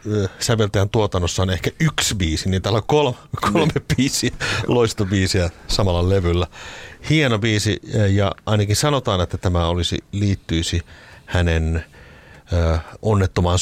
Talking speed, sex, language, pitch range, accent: 110 wpm, male, Finnish, 85-110 Hz, native